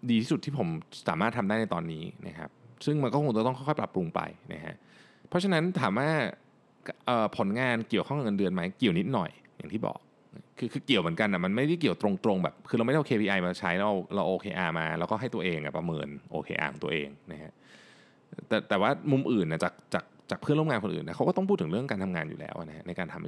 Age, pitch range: 20-39, 90-140 Hz